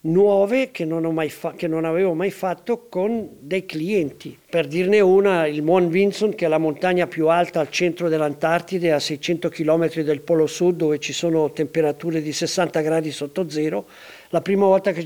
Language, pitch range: Italian, 160-205 Hz